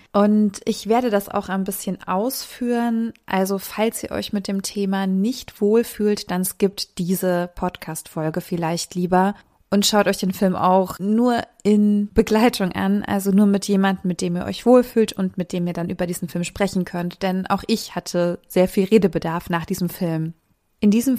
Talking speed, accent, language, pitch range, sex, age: 180 wpm, German, German, 180-210 Hz, female, 20-39